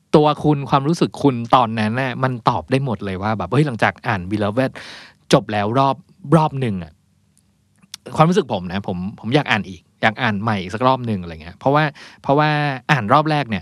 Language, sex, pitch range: Thai, male, 105-145 Hz